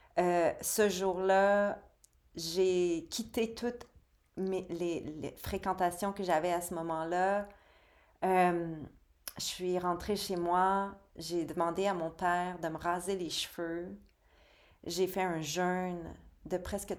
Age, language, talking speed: 30-49, French, 130 wpm